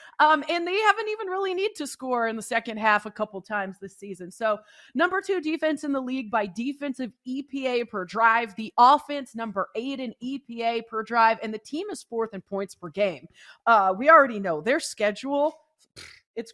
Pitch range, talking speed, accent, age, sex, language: 205-280 Hz, 195 wpm, American, 30-49, female, English